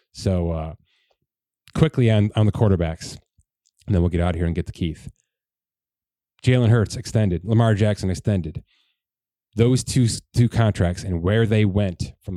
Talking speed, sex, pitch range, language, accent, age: 160 wpm, male, 90-115 Hz, English, American, 30-49